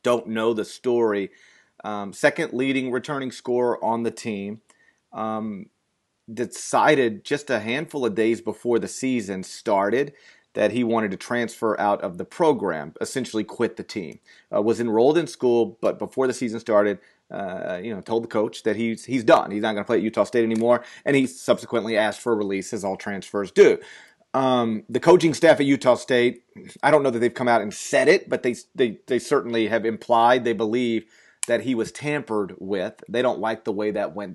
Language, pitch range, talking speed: English, 110-125 Hz, 200 wpm